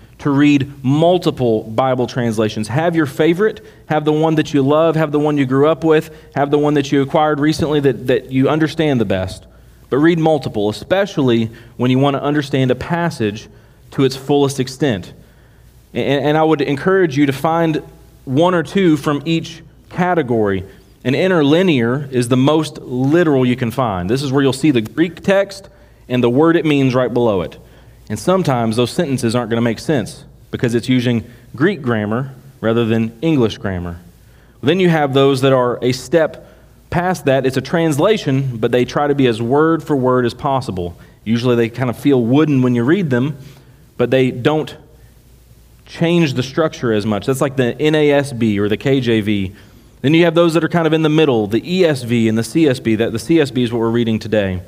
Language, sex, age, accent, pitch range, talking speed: English, male, 30-49, American, 120-155 Hz, 195 wpm